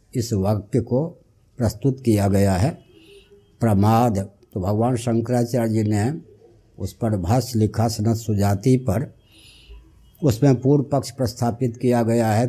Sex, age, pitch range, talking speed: male, 60-79, 105-125 Hz, 130 wpm